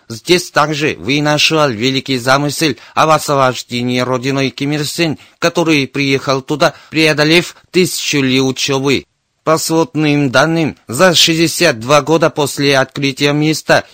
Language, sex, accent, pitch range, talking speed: Russian, male, native, 135-155 Hz, 110 wpm